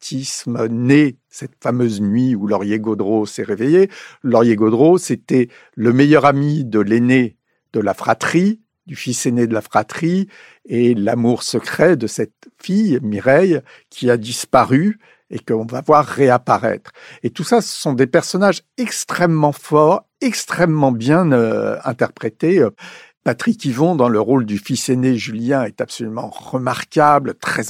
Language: French